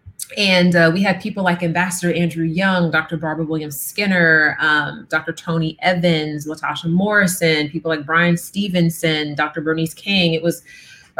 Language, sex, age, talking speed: English, female, 30-49, 155 wpm